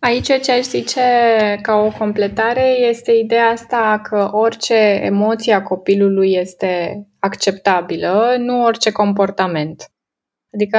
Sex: female